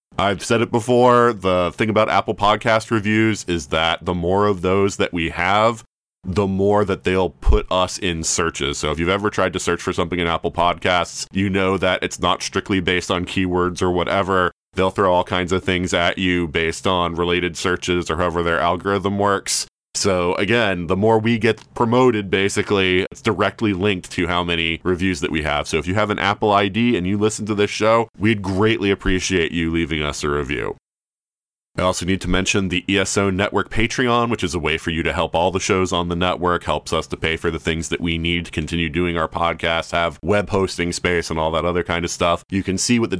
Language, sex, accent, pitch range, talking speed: English, male, American, 85-105 Hz, 220 wpm